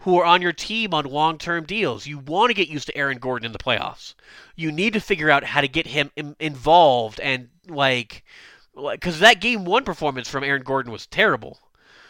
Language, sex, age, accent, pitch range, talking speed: English, male, 30-49, American, 140-190 Hz, 210 wpm